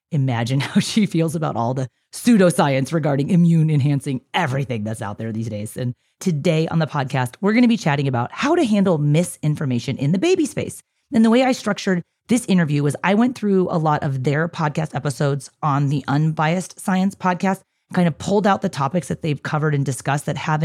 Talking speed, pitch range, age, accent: 205 wpm, 140-185 Hz, 30-49, American